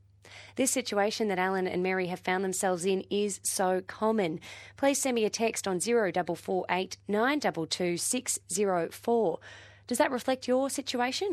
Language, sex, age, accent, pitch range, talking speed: English, female, 20-39, Australian, 170-225 Hz, 180 wpm